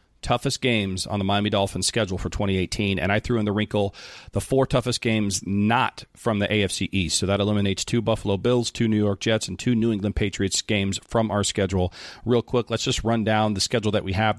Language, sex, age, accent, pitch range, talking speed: English, male, 40-59, American, 100-120 Hz, 225 wpm